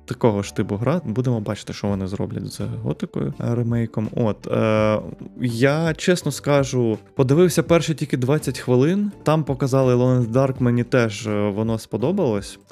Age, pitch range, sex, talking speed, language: 20-39, 110-140 Hz, male, 140 wpm, Ukrainian